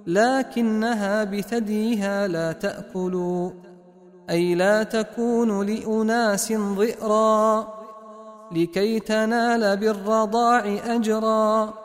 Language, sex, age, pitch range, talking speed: Arabic, male, 30-49, 200-225 Hz, 65 wpm